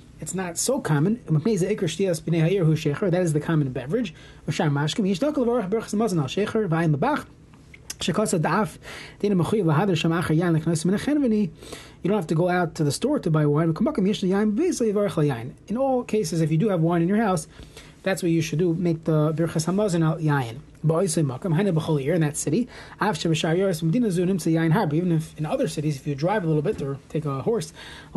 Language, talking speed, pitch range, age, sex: English, 130 wpm, 155-205 Hz, 30-49, male